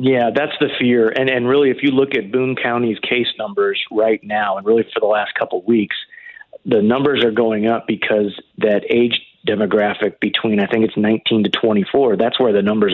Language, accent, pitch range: English, American, 110-130 Hz